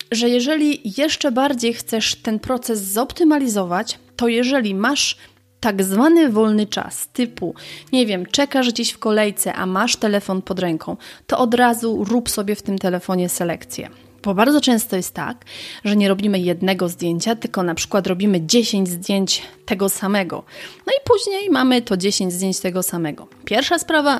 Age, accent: 30-49, native